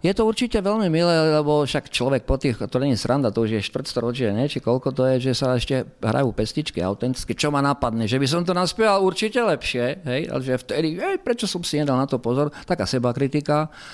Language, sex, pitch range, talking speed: Slovak, male, 120-150 Hz, 230 wpm